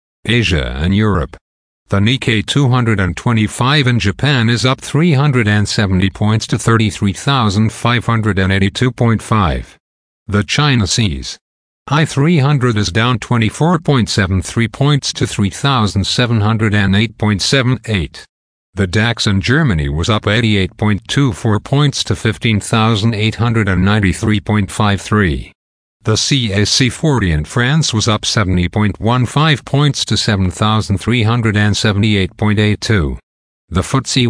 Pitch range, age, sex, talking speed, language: 95-120 Hz, 50-69, male, 80 wpm, English